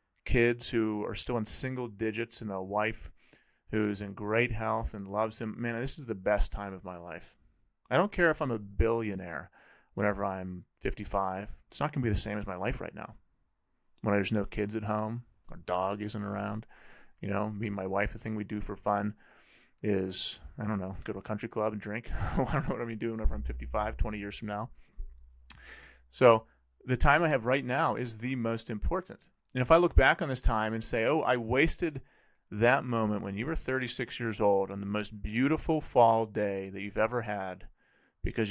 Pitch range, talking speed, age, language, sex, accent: 100-120 Hz, 215 wpm, 30-49, English, male, American